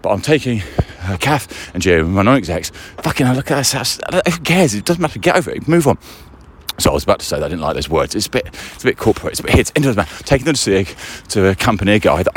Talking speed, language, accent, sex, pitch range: 290 wpm, English, British, male, 90-130 Hz